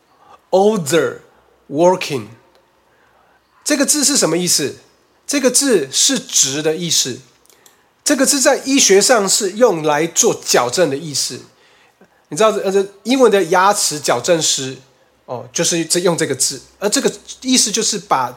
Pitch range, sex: 160-255 Hz, male